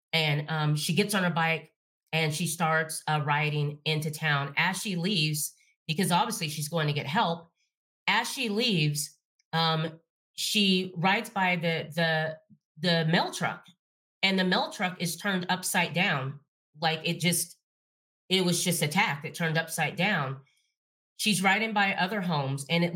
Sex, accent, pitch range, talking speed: female, American, 160-195 Hz, 160 wpm